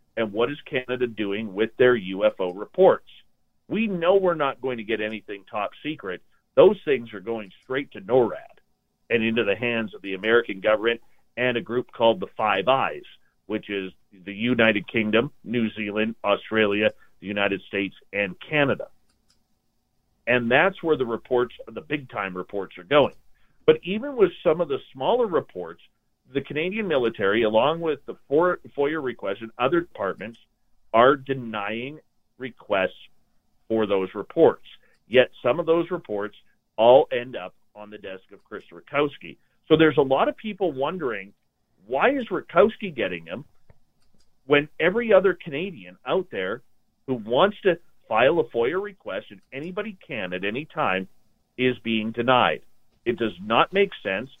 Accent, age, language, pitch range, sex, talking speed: American, 40-59, English, 110-165 Hz, male, 155 wpm